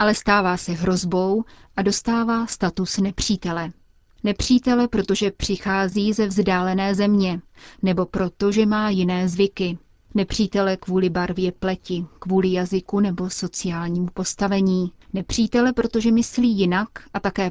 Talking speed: 115 wpm